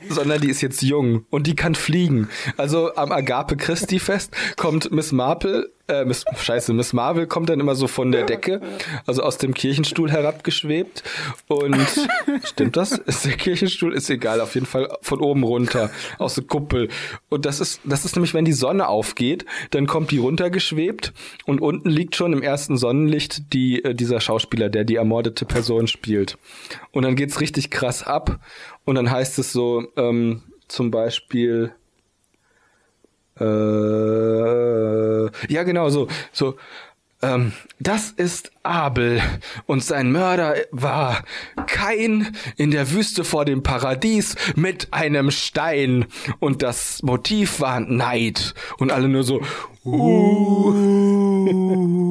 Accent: German